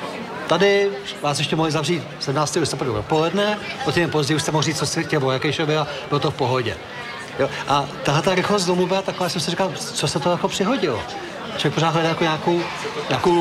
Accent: native